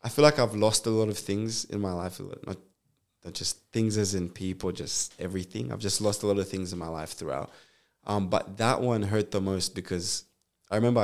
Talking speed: 230 wpm